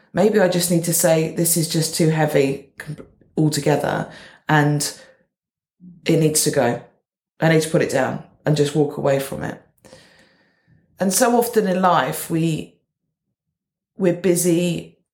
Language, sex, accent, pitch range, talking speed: English, female, British, 155-180 Hz, 145 wpm